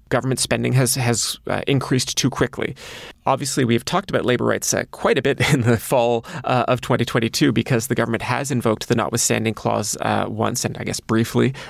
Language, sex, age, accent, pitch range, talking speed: English, male, 30-49, American, 115-130 Hz, 195 wpm